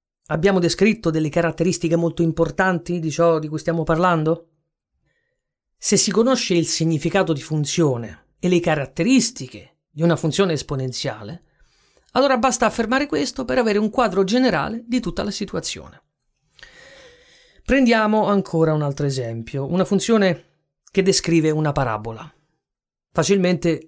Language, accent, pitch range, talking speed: Italian, native, 150-195 Hz, 130 wpm